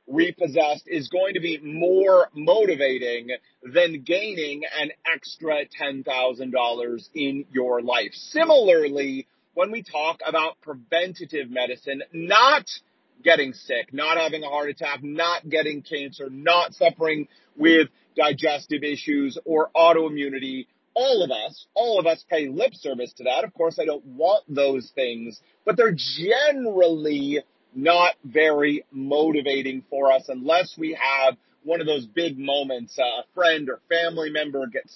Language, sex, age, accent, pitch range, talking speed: English, male, 30-49, American, 140-175 Hz, 135 wpm